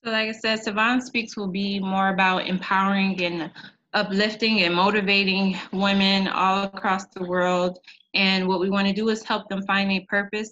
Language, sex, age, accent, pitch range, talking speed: English, female, 20-39, American, 175-195 Hz, 185 wpm